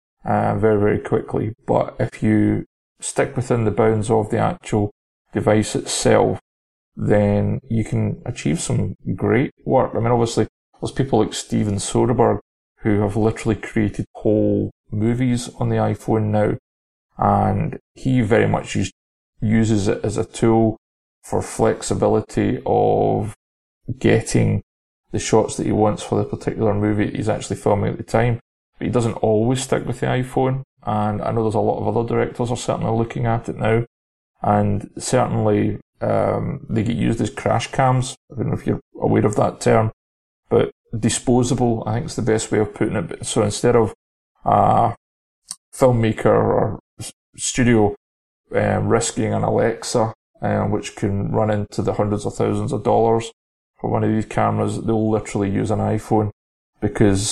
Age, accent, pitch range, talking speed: 30-49, British, 105-115 Hz, 160 wpm